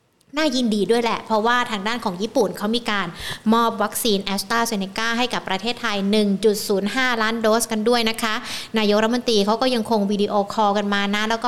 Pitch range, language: 205-245 Hz, Thai